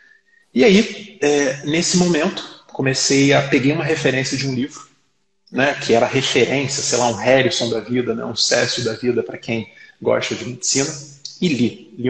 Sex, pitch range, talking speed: male, 125-150 Hz, 180 wpm